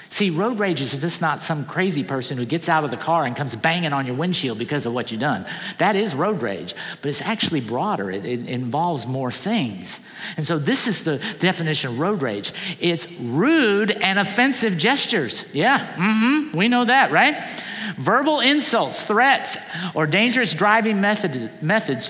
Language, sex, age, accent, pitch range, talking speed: English, male, 50-69, American, 155-230 Hz, 185 wpm